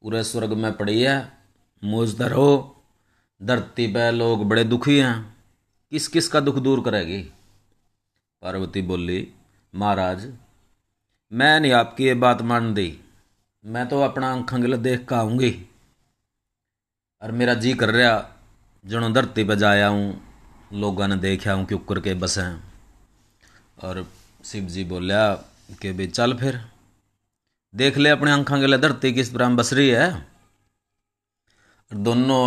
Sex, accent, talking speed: male, native, 135 wpm